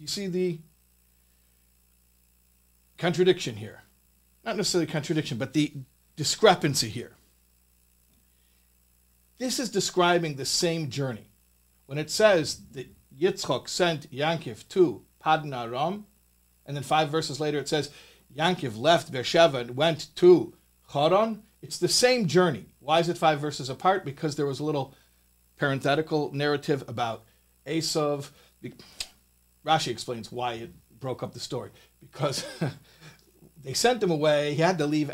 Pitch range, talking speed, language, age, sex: 120-165 Hz, 135 wpm, English, 50-69, male